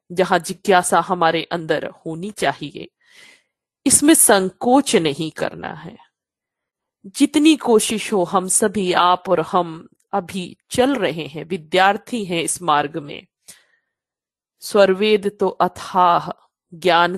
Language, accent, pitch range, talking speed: Hindi, native, 170-210 Hz, 110 wpm